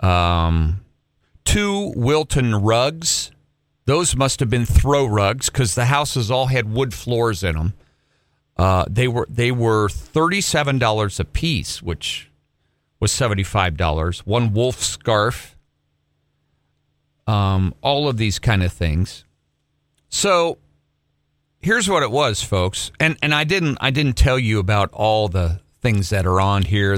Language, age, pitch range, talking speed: English, 50-69, 85-120 Hz, 140 wpm